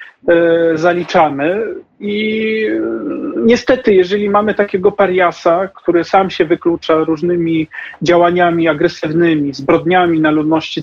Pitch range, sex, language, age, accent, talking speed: 165-205 Hz, male, Polish, 40-59, native, 95 wpm